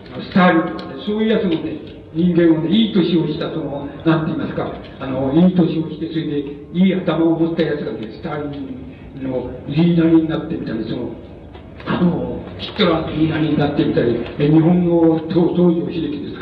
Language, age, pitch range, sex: Japanese, 60-79, 155-185 Hz, male